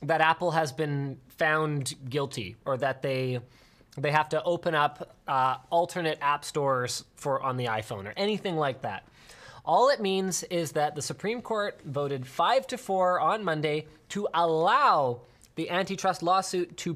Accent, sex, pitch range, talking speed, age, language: American, male, 140-190 Hz, 165 wpm, 20-39, English